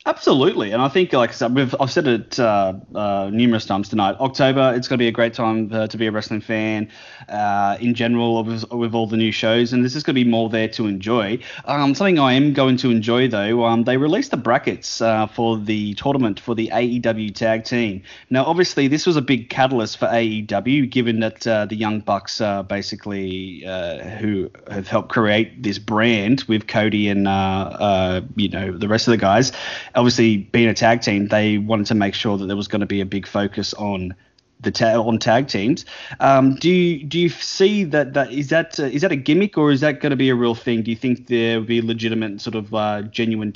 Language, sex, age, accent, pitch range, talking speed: English, male, 20-39, Australian, 105-125 Hz, 225 wpm